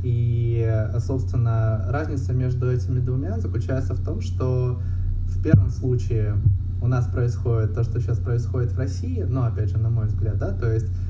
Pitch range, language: 90-115 Hz, Russian